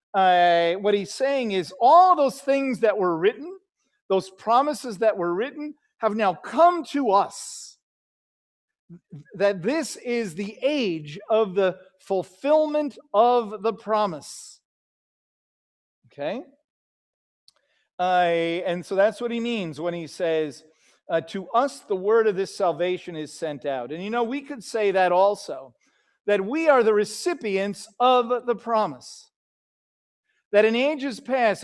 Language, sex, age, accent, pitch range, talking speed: English, male, 50-69, American, 180-260 Hz, 140 wpm